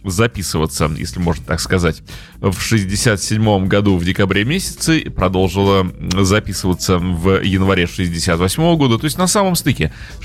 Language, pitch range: Russian, 95-125 Hz